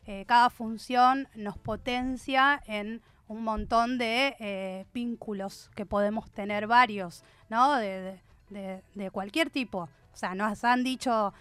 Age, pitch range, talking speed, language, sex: 20-39, 200-250 Hz, 140 wpm, Spanish, female